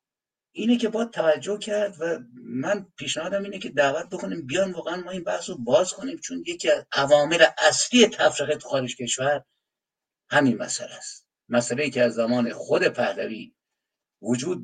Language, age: Persian, 60-79